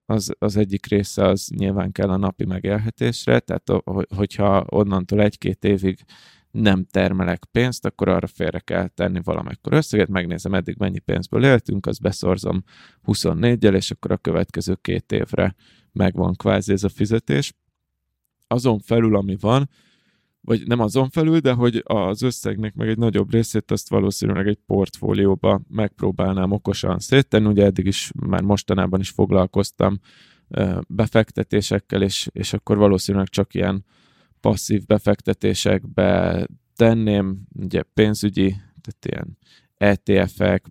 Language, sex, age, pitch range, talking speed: Hungarian, male, 20-39, 95-110 Hz, 130 wpm